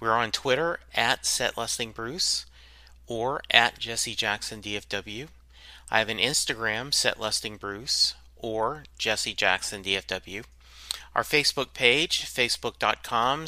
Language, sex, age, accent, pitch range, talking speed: English, male, 30-49, American, 105-125 Hz, 100 wpm